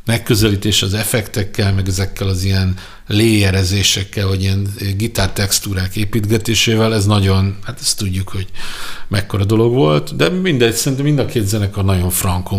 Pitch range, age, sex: 95-115 Hz, 50-69, male